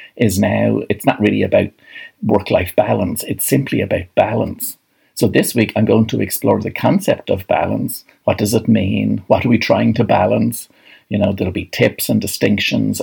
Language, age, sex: English, 60-79, male